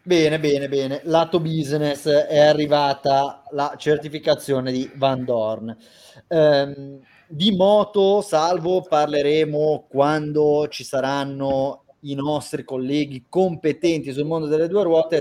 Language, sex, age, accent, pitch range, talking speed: Italian, male, 30-49, native, 125-150 Hz, 115 wpm